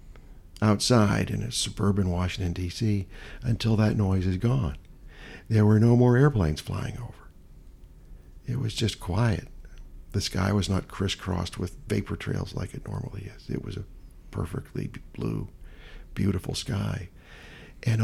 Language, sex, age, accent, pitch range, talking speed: English, male, 50-69, American, 85-105 Hz, 140 wpm